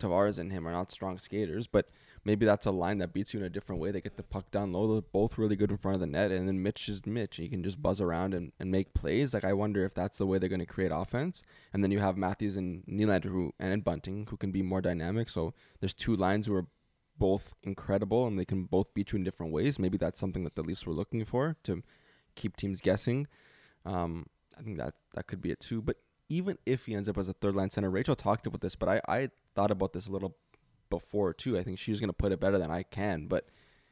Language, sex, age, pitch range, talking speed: English, male, 20-39, 95-105 Hz, 265 wpm